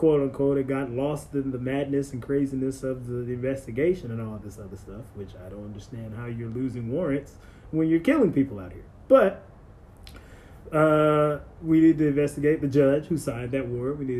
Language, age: English, 20-39